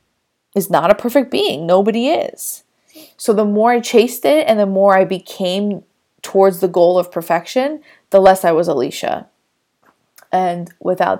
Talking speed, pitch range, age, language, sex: 160 wpm, 185-250 Hz, 20-39, English, female